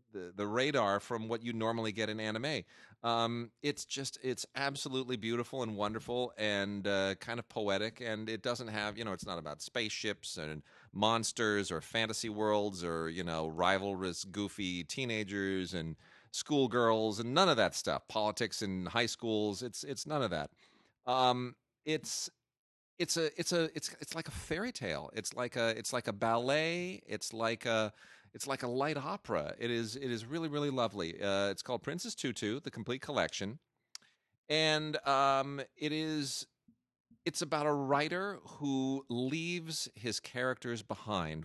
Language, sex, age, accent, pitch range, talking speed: English, male, 40-59, American, 105-130 Hz, 165 wpm